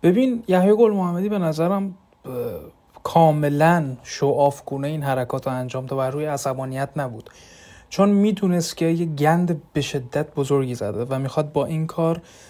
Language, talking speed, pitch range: Persian, 160 wpm, 140-170 Hz